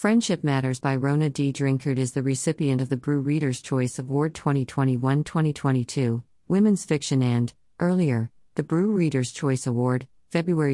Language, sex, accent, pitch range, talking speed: English, female, American, 125-170 Hz, 145 wpm